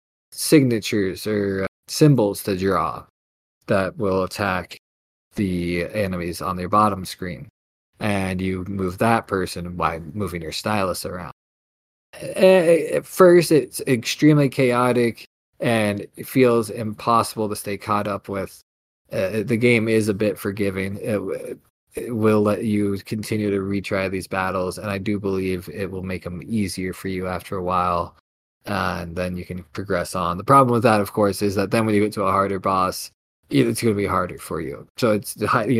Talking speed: 170 wpm